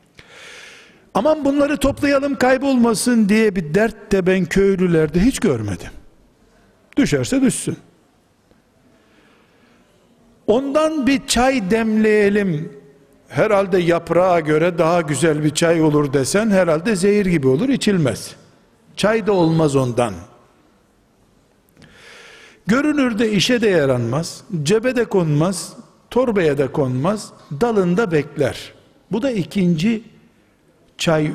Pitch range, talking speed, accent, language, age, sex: 150-220 Hz, 100 wpm, native, Turkish, 60-79, male